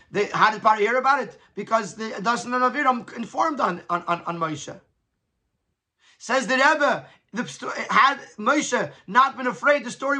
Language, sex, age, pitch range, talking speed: English, male, 30-49, 210-260 Hz, 155 wpm